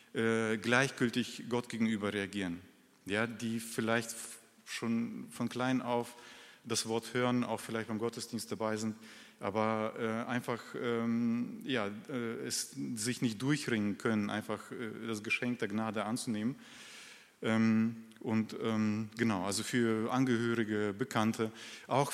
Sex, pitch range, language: male, 110-120 Hz, German